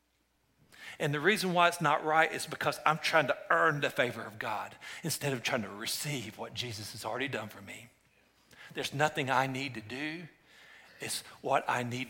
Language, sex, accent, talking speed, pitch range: English, male, American, 195 wpm, 115-150 Hz